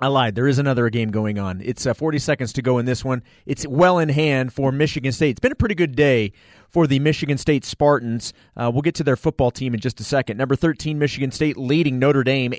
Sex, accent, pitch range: male, American, 125-155 Hz